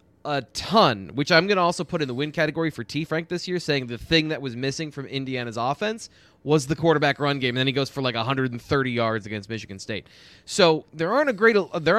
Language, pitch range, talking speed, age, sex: English, 115-160 Hz, 245 wpm, 20-39, male